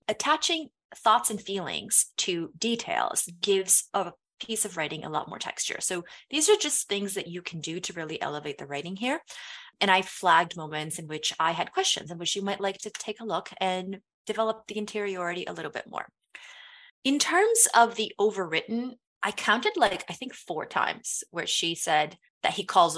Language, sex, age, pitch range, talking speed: English, female, 20-39, 165-240 Hz, 195 wpm